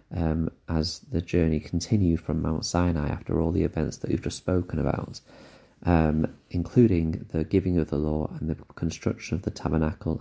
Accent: British